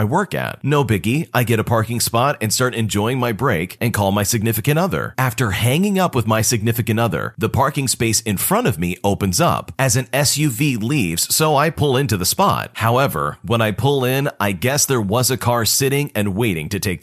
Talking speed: 215 wpm